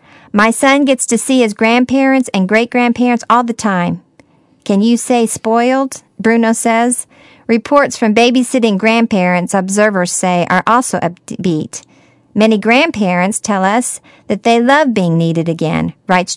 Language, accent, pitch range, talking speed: English, American, 200-245 Hz, 140 wpm